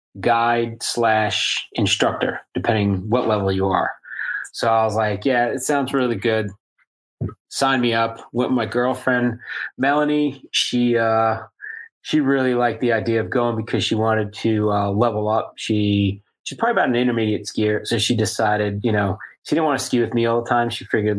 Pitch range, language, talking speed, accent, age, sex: 105-125 Hz, English, 185 wpm, American, 30-49, male